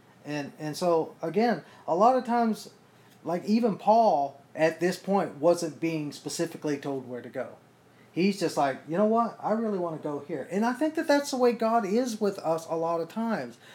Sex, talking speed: male, 210 wpm